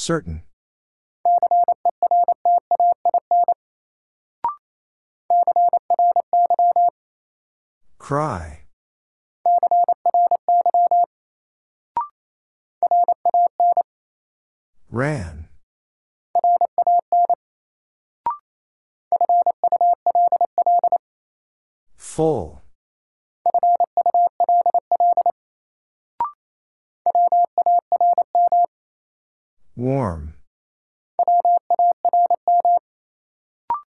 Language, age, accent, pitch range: English, 50-69, American, 315-350 Hz